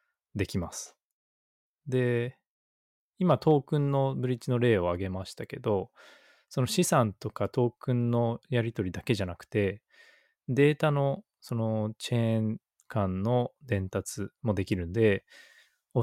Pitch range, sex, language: 100-125 Hz, male, Japanese